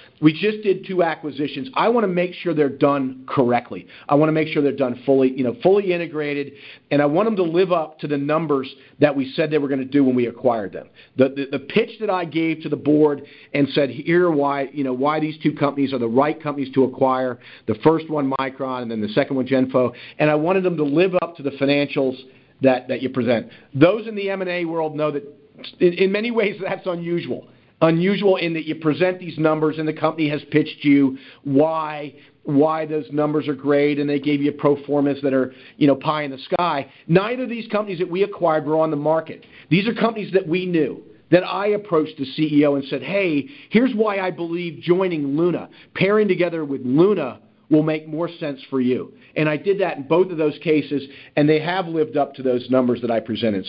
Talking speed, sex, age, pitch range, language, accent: 230 wpm, male, 40-59, 140-175 Hz, English, American